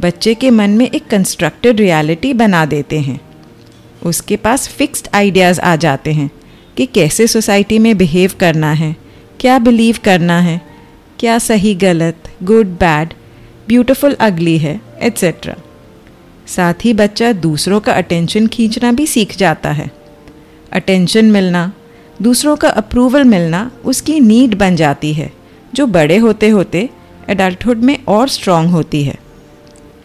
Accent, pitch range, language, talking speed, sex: native, 160-235 Hz, Hindi, 140 wpm, female